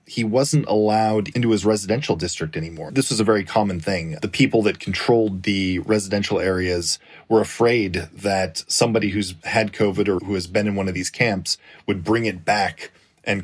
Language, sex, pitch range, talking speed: English, male, 95-115 Hz, 190 wpm